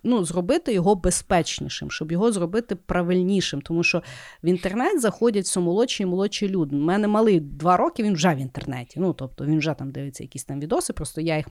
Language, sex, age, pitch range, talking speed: Ukrainian, female, 30-49, 175-240 Hz, 200 wpm